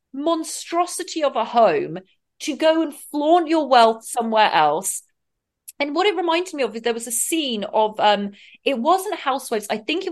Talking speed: 185 wpm